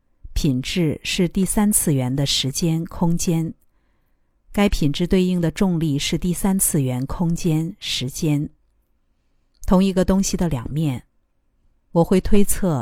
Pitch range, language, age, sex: 140-190 Hz, Chinese, 50-69, female